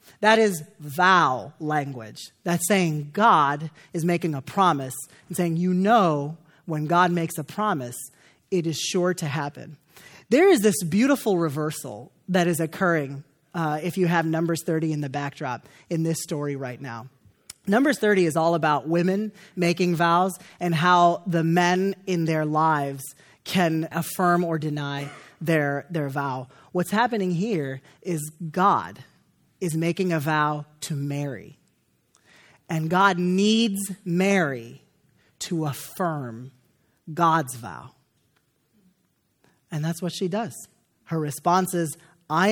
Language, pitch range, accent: English, 145-180 Hz, American